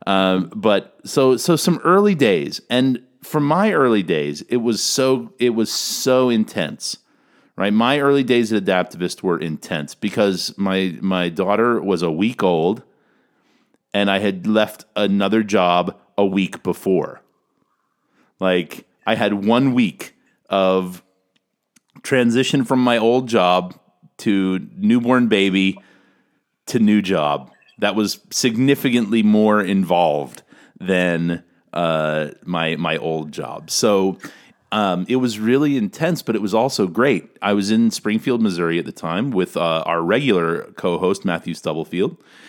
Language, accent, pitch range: English, American, 95-120 Hz